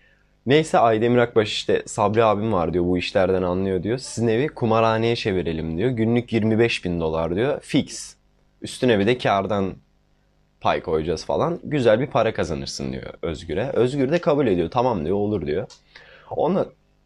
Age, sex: 20-39, male